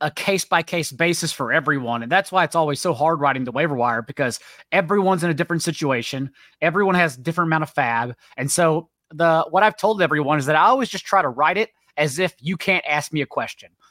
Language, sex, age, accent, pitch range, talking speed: English, male, 30-49, American, 145-185 Hz, 235 wpm